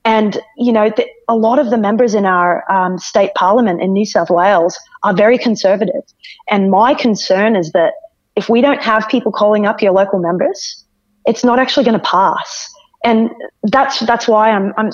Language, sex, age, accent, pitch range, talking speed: English, female, 30-49, Australian, 185-225 Hz, 195 wpm